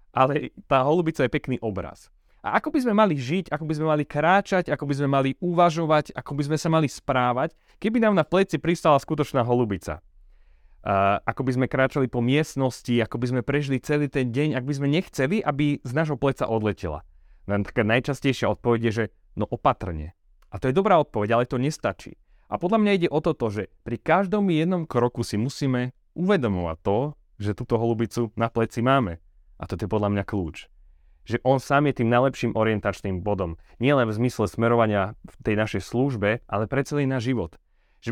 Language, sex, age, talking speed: Slovak, male, 30-49, 195 wpm